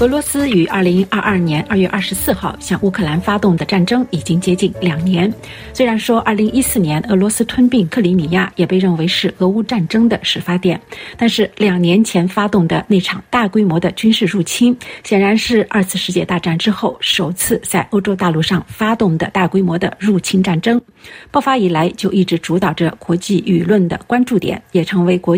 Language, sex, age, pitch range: Chinese, female, 50-69, 175-220 Hz